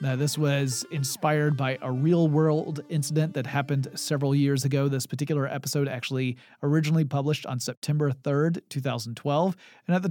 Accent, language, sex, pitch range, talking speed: American, English, male, 130-160 Hz, 155 wpm